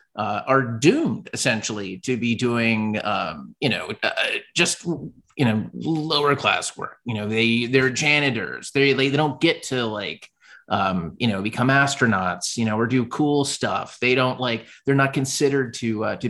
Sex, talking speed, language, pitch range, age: male, 180 wpm, English, 115-140 Hz, 30-49